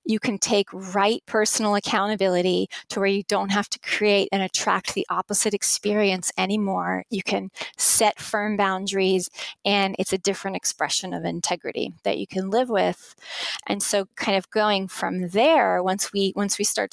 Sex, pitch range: female, 190-215 Hz